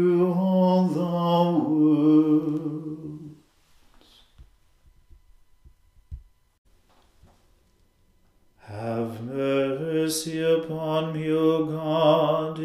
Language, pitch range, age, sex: English, 150-160 Hz, 40-59, male